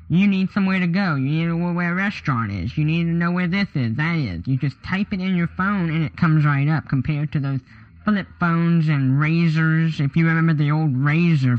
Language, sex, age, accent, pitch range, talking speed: English, male, 10-29, American, 130-165 Hz, 245 wpm